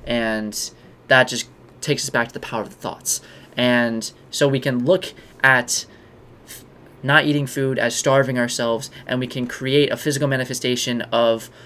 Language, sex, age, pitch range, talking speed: English, male, 20-39, 115-130 Hz, 165 wpm